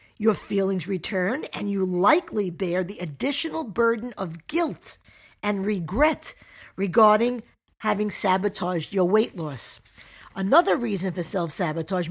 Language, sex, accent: English, female, American